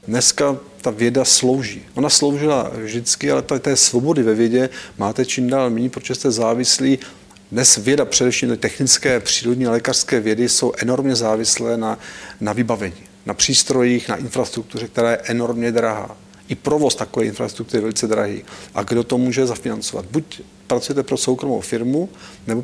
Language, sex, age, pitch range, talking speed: Czech, male, 40-59, 115-135 Hz, 155 wpm